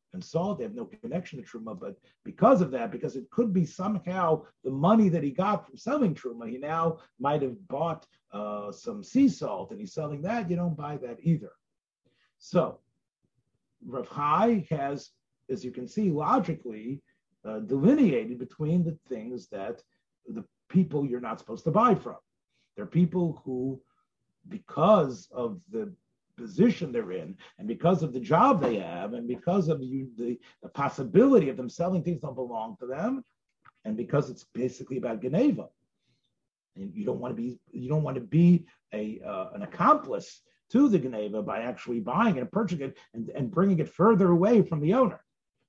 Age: 50-69